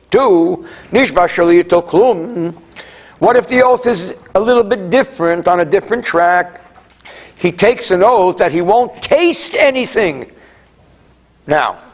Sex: male